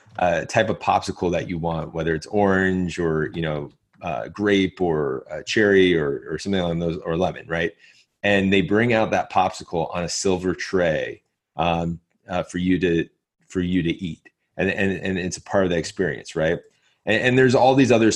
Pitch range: 85-105 Hz